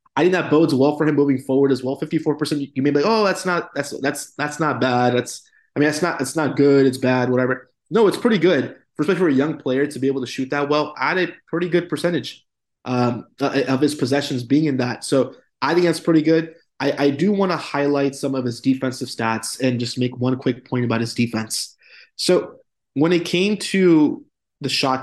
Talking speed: 235 wpm